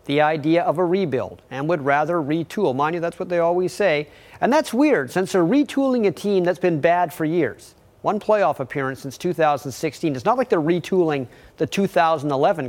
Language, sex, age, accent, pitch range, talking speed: English, male, 40-59, American, 145-210 Hz, 195 wpm